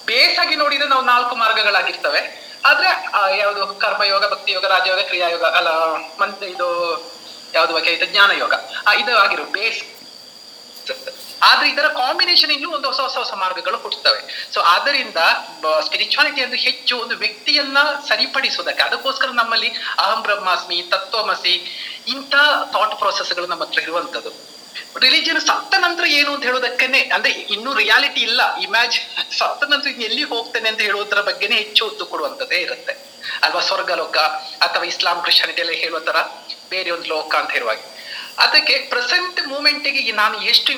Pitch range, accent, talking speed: 195-290 Hz, Indian, 65 wpm